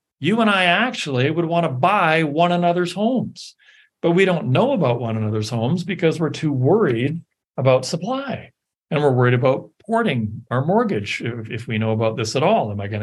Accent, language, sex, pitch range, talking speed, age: American, English, male, 120-170 Hz, 195 wpm, 40-59